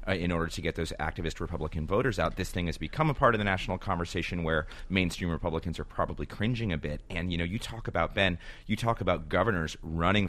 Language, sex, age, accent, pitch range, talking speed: English, male, 30-49, American, 80-95 Hz, 235 wpm